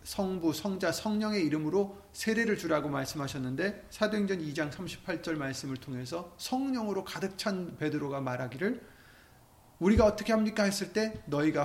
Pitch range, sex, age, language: 150-215 Hz, male, 30-49, Korean